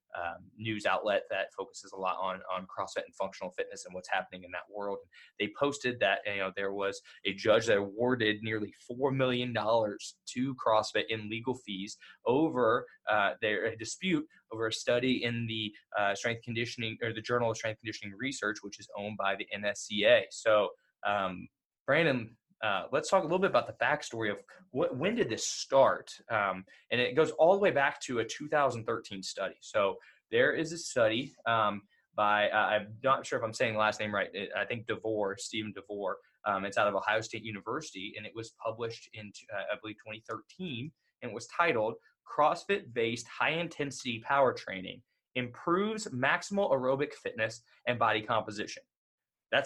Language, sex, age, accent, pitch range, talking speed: English, male, 20-39, American, 105-135 Hz, 185 wpm